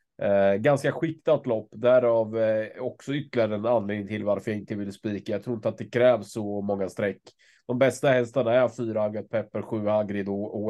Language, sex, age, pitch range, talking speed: Swedish, male, 20-39, 105-125 Hz, 210 wpm